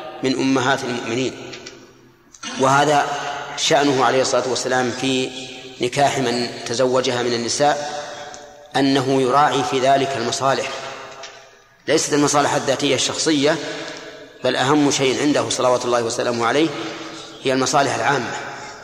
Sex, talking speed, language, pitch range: male, 110 wpm, Arabic, 130-150 Hz